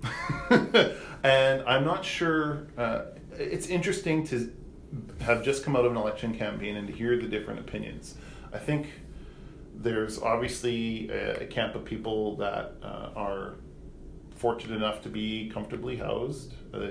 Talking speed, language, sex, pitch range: 145 wpm, English, male, 105-120 Hz